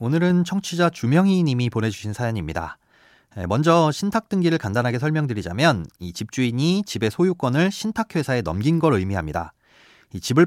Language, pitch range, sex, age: Korean, 105-165 Hz, male, 30-49